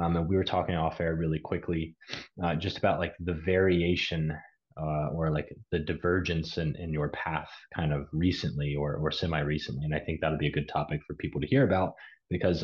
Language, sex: English, male